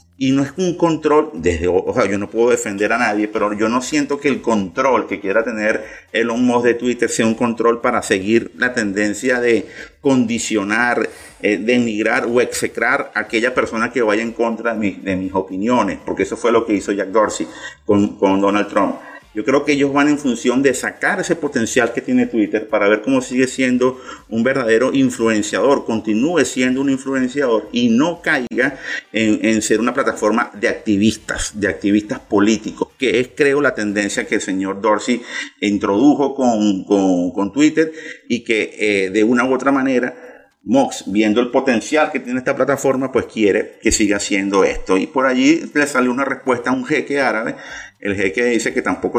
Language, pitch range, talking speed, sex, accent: Spanish, 105-135 Hz, 190 wpm, male, Venezuelan